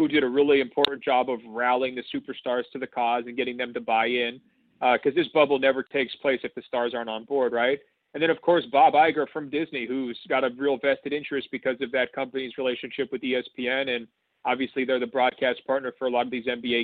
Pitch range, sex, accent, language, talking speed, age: 130-160 Hz, male, American, English, 235 wpm, 40-59